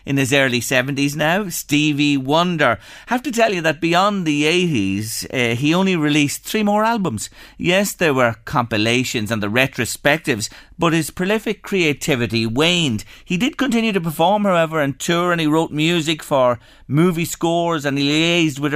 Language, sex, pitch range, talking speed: English, male, 120-180 Hz, 170 wpm